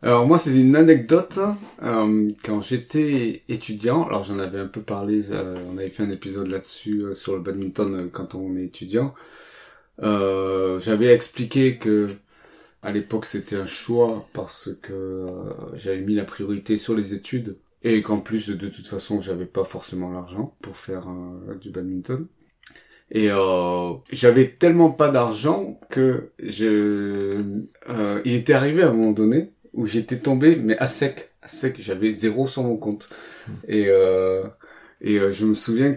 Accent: French